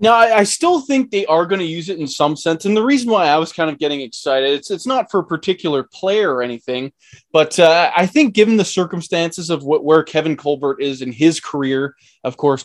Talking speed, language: 235 wpm, English